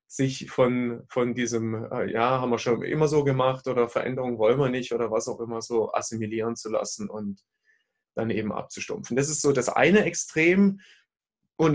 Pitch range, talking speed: 115-145 Hz, 185 wpm